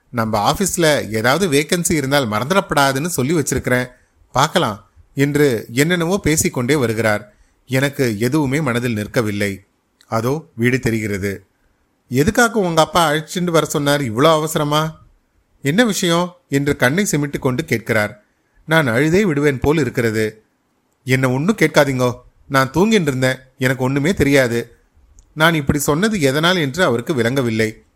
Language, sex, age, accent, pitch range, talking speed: Tamil, male, 30-49, native, 115-155 Hz, 115 wpm